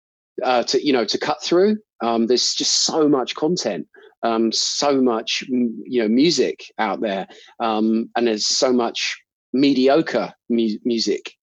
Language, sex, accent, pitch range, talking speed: English, male, British, 110-130 Hz, 145 wpm